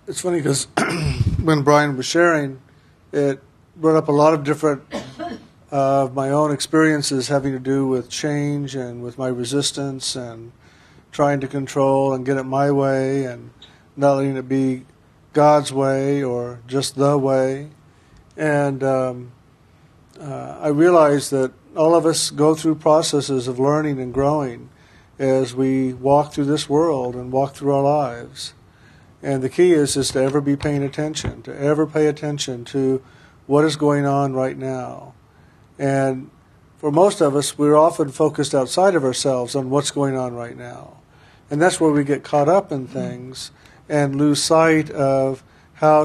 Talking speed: 165 wpm